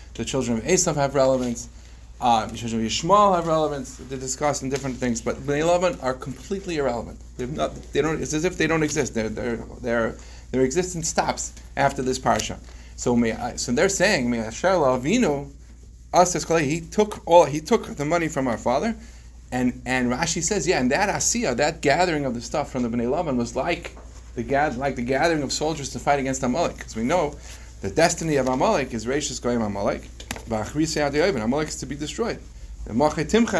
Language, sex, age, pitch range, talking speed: English, male, 30-49, 105-150 Hz, 180 wpm